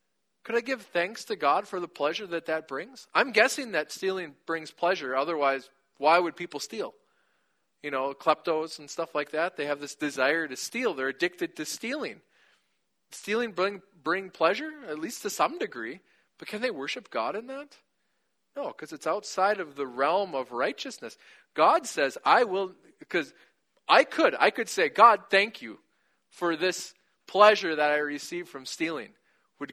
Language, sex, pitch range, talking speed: English, male, 145-210 Hz, 175 wpm